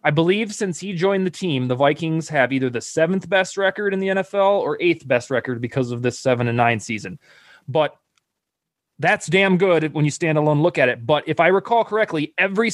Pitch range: 130-165 Hz